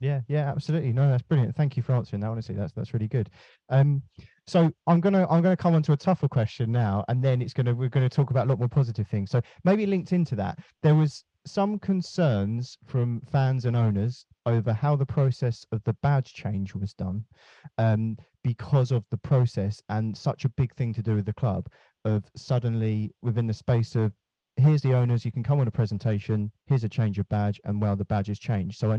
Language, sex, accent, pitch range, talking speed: English, male, British, 110-135 Hz, 225 wpm